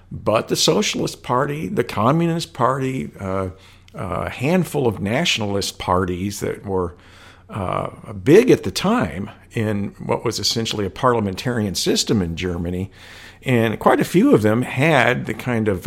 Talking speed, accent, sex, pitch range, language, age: 150 wpm, American, male, 90-110 Hz, English, 50-69